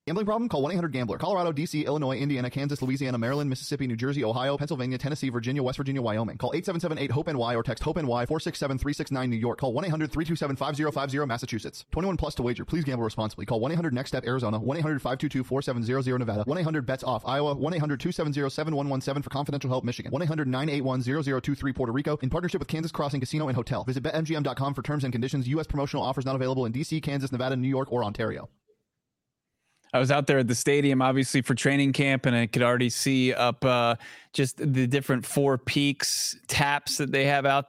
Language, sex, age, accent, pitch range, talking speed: English, male, 30-49, American, 125-145 Hz, 175 wpm